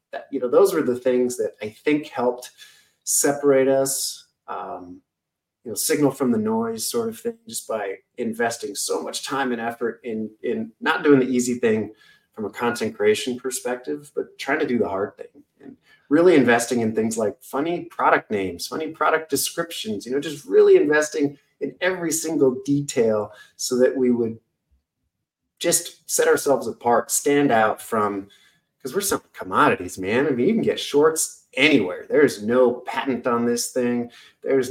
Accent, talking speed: American, 175 wpm